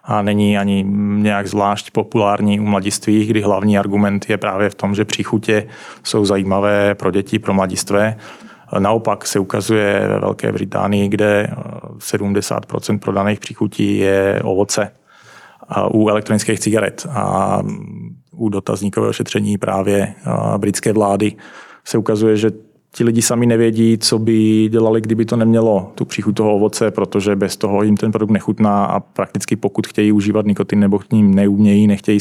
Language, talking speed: Czech, 150 wpm